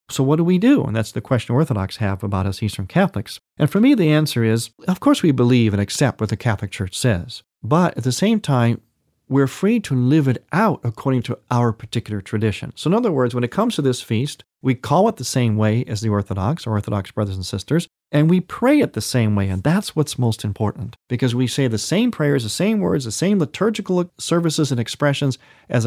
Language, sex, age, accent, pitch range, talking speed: English, male, 40-59, American, 115-160 Hz, 230 wpm